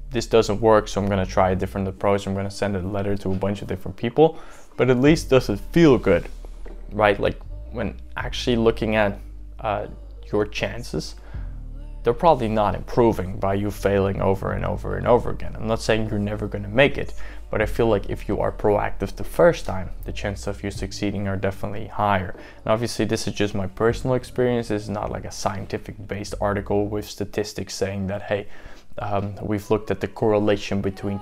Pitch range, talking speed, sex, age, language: 95-110 Hz, 200 wpm, male, 20-39, English